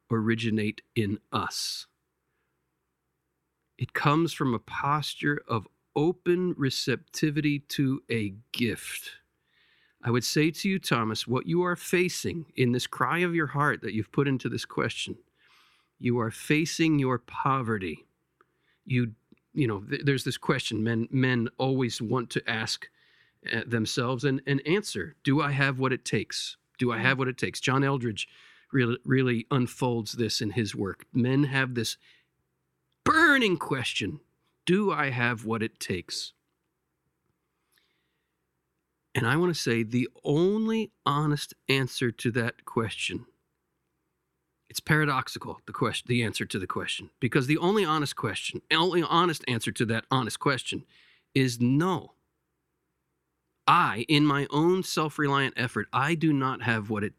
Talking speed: 145 wpm